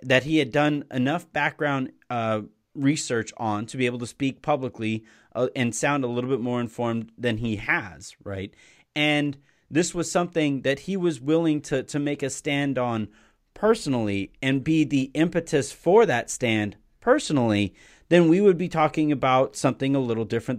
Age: 30-49